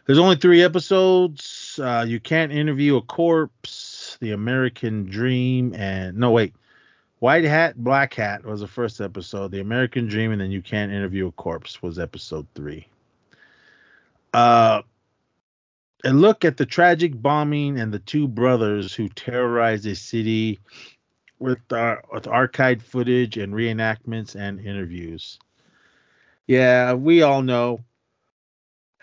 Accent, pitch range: American, 95-125 Hz